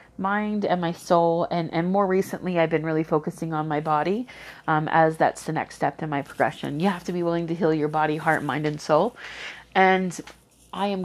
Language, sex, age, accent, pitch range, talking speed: English, female, 30-49, American, 160-180 Hz, 215 wpm